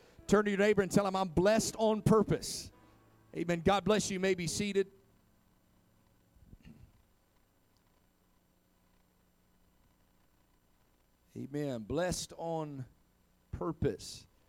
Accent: American